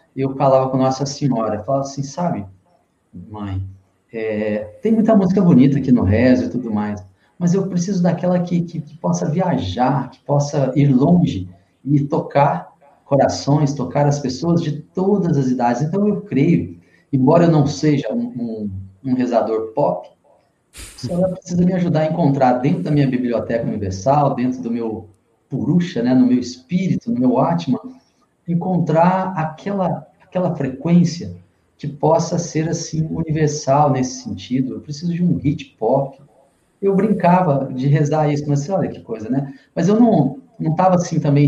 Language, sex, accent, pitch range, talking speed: English, male, Brazilian, 130-170 Hz, 165 wpm